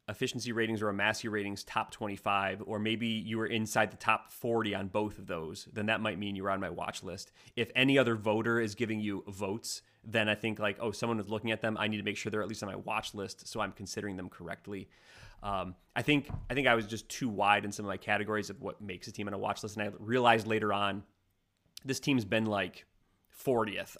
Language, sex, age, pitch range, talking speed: English, male, 30-49, 100-110 Hz, 245 wpm